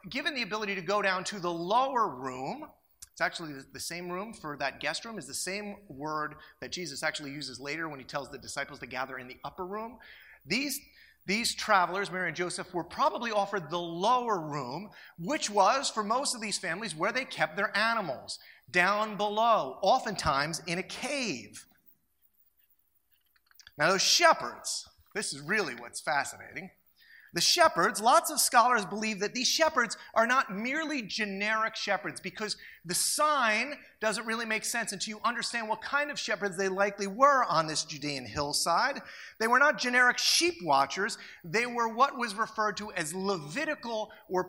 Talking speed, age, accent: 170 wpm, 30-49, American